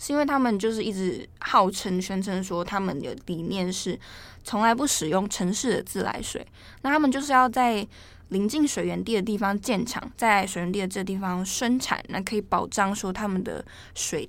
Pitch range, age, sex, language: 190-240 Hz, 10-29, female, Chinese